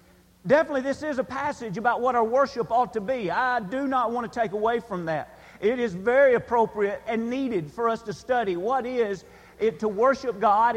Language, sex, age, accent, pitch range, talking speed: English, male, 40-59, American, 225-270 Hz, 205 wpm